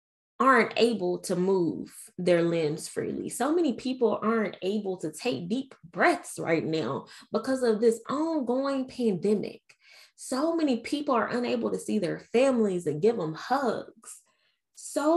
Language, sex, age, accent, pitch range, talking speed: English, female, 20-39, American, 185-260 Hz, 145 wpm